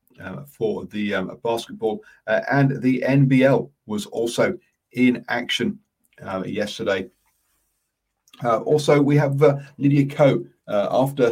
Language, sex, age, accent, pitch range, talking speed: English, male, 40-59, British, 100-140 Hz, 125 wpm